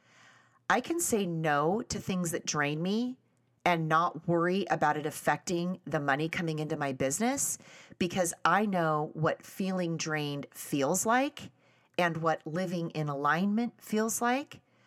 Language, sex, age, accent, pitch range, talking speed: English, female, 30-49, American, 150-195 Hz, 145 wpm